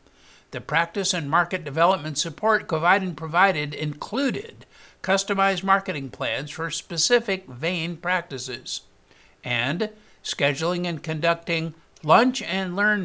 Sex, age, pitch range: male, 60-79, 140-195 Hz